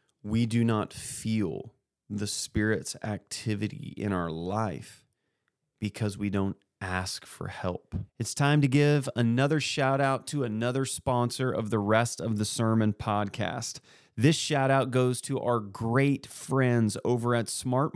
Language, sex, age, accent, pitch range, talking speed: English, male, 30-49, American, 115-140 Hz, 140 wpm